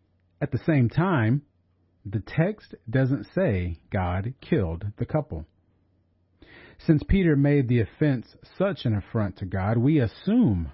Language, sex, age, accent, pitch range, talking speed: English, male, 40-59, American, 95-135 Hz, 135 wpm